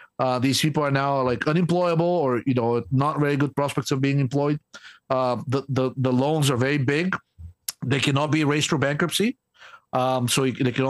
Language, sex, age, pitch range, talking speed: English, male, 50-69, 135-175 Hz, 195 wpm